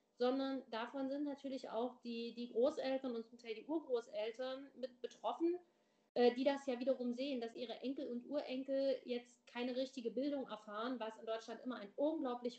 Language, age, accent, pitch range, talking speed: German, 30-49, German, 230-270 Hz, 170 wpm